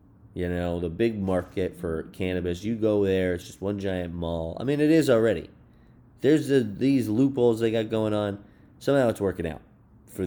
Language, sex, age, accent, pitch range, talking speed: English, male, 30-49, American, 90-110 Hz, 195 wpm